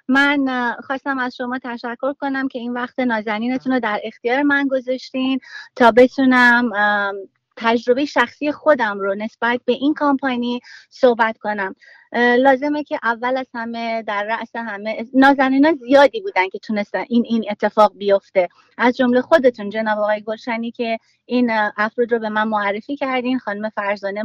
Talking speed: 150 wpm